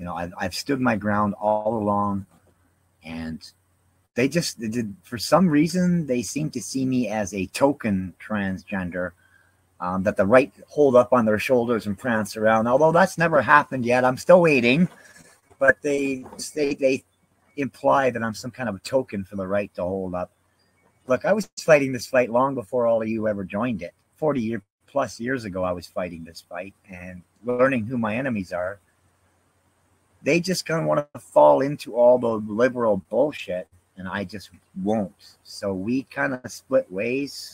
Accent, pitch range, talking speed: American, 95-125 Hz, 185 wpm